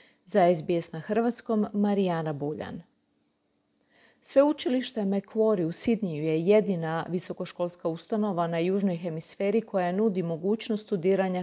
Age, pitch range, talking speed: 40-59, 175-220 Hz, 110 wpm